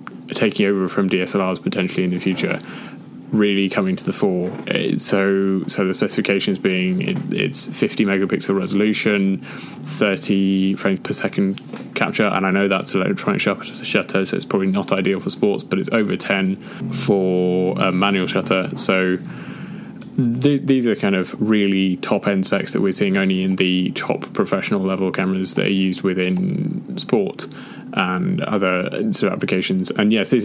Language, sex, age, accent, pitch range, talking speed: English, male, 20-39, British, 95-130 Hz, 160 wpm